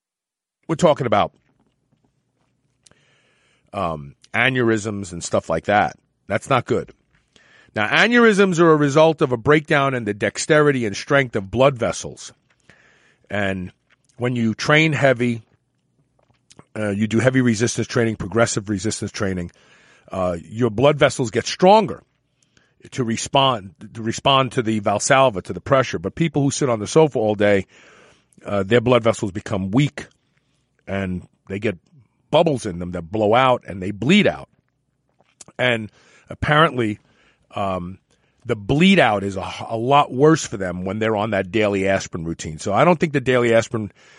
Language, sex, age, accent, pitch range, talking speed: English, male, 40-59, American, 105-140 Hz, 150 wpm